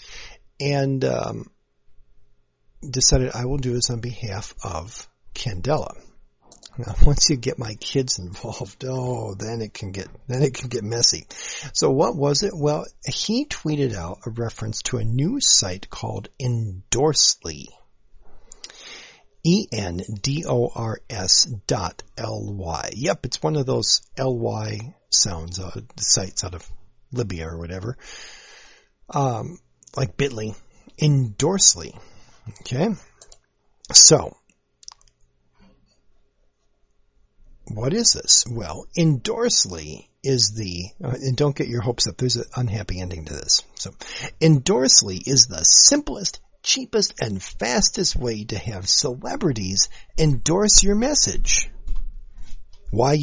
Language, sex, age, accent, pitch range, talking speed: English, male, 50-69, American, 100-140 Hz, 115 wpm